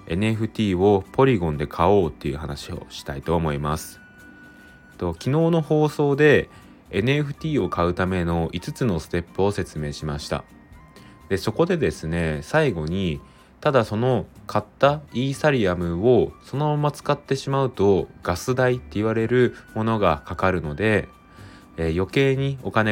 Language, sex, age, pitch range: Japanese, male, 20-39, 75-115 Hz